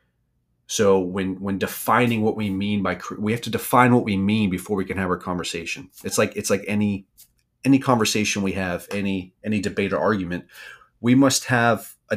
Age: 30-49